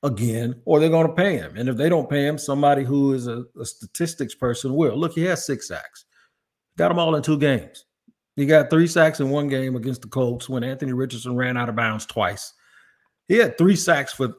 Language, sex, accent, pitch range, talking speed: English, male, American, 120-150 Hz, 230 wpm